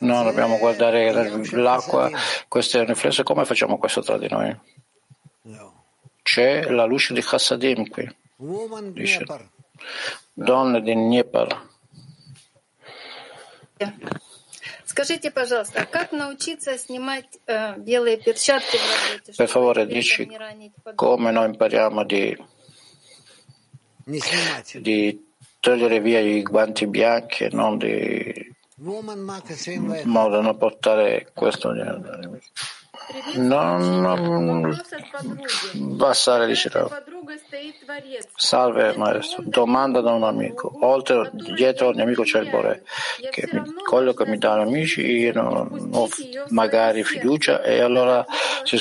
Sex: male